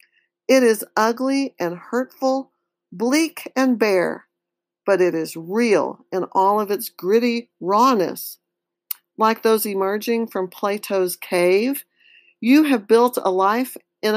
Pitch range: 185-255 Hz